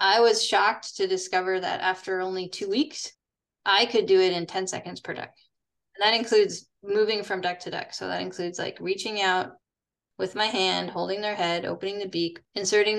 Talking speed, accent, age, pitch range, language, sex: 200 wpm, American, 10-29, 175-205 Hz, English, female